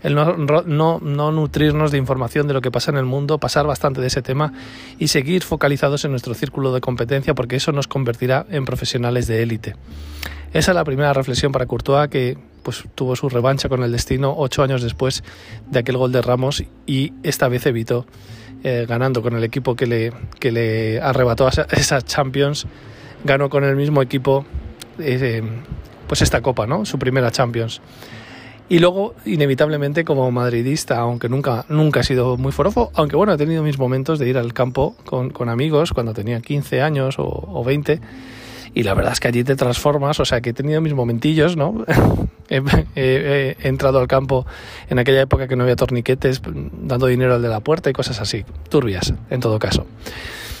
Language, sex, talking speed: Spanish, male, 190 wpm